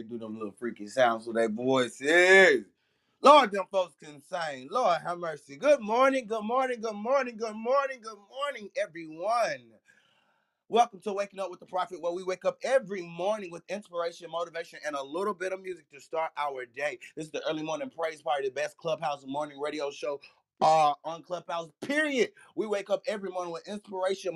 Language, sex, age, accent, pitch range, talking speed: English, male, 30-49, American, 150-205 Hz, 195 wpm